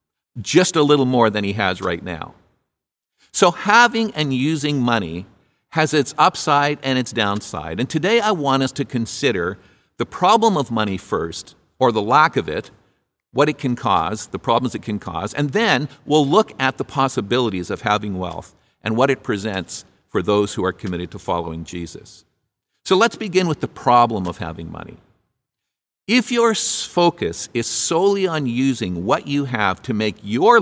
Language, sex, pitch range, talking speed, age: English, male, 105-160 Hz, 175 wpm, 50-69